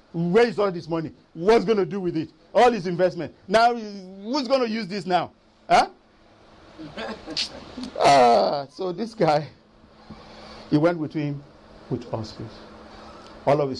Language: English